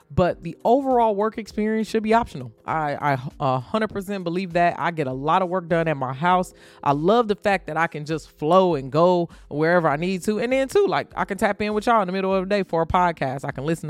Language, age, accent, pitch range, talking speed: English, 20-39, American, 145-195 Hz, 260 wpm